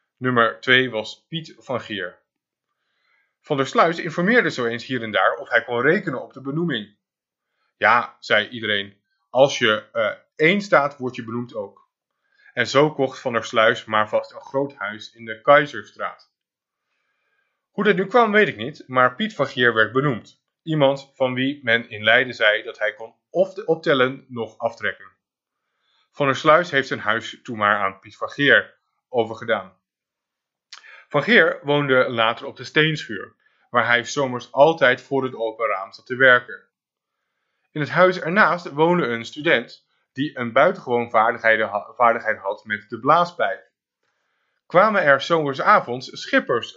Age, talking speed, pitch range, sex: 20-39, 160 wpm, 115-150 Hz, male